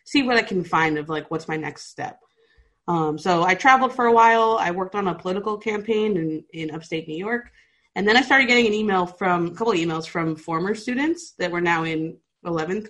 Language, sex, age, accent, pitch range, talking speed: English, female, 20-39, American, 160-210 Hz, 230 wpm